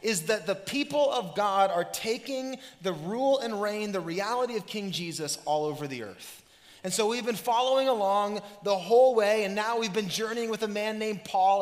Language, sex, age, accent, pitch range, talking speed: English, male, 20-39, American, 200-255 Hz, 205 wpm